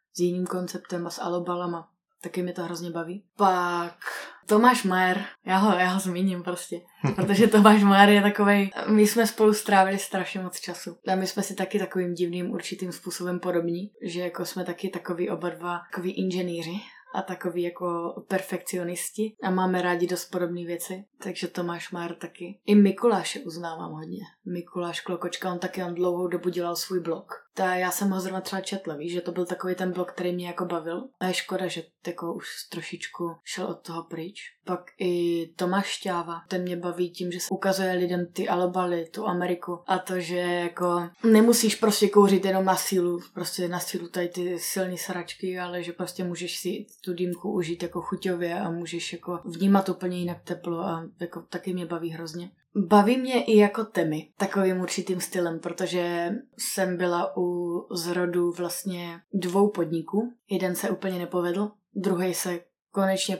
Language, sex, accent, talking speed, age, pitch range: Czech, female, native, 175 wpm, 20-39, 175-190 Hz